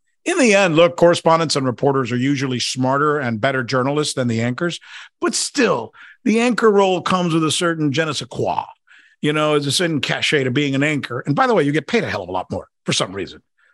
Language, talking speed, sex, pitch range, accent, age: English, 230 wpm, male, 135-195 Hz, American, 50-69